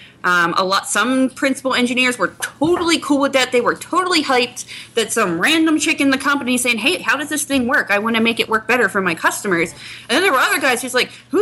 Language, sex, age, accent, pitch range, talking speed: English, female, 20-39, American, 205-280 Hz, 250 wpm